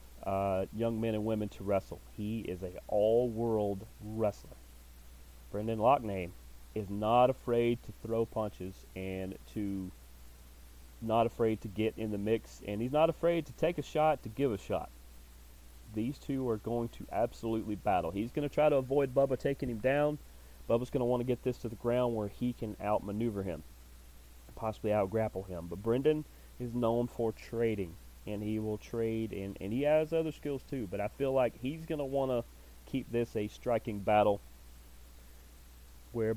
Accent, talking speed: American, 180 wpm